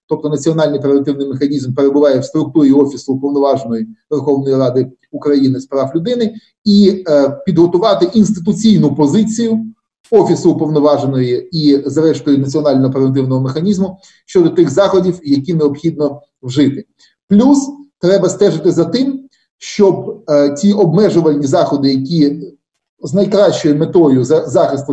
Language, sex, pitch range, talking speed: Ukrainian, male, 140-195 Hz, 115 wpm